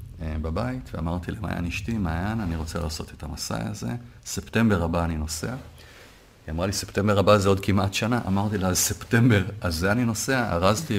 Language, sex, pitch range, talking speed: Hebrew, male, 85-110 Hz, 170 wpm